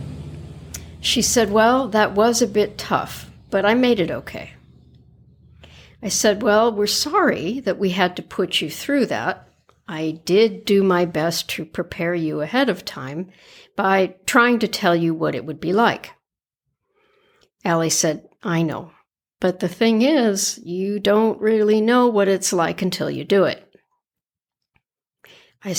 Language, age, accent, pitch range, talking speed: English, 60-79, American, 180-250 Hz, 155 wpm